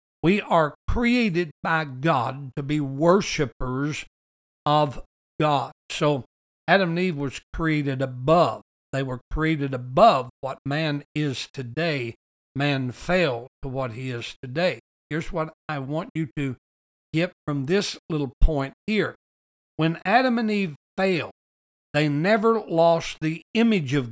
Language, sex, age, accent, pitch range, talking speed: English, male, 60-79, American, 135-175 Hz, 135 wpm